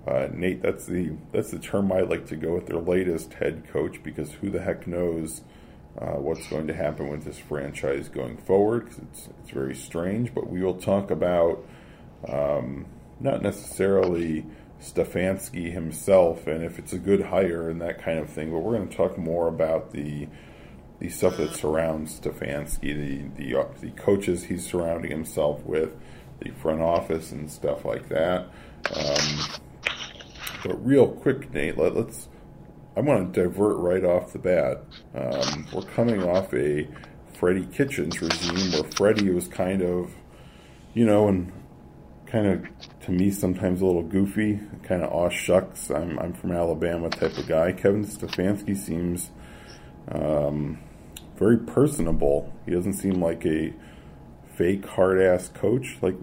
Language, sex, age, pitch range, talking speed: English, male, 40-59, 80-95 Hz, 160 wpm